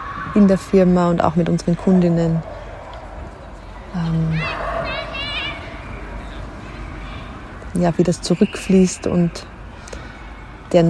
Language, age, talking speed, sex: German, 30-49, 75 wpm, female